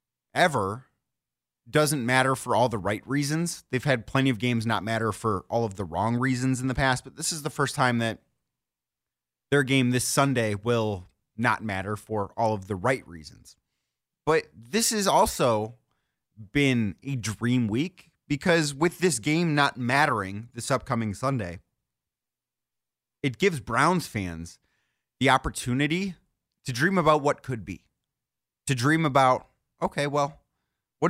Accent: American